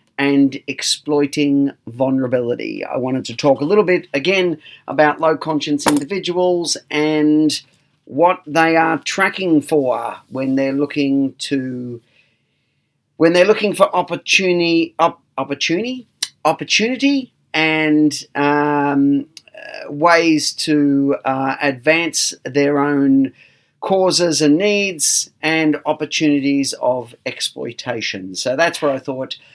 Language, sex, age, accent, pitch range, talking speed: English, male, 40-59, Australian, 135-170 Hz, 105 wpm